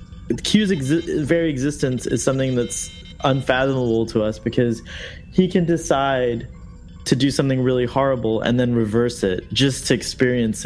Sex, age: male, 20-39